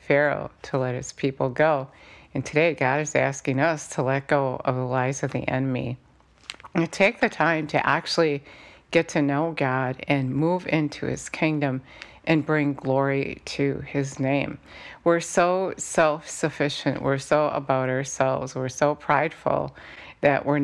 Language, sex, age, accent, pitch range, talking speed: English, female, 50-69, American, 135-150 Hz, 155 wpm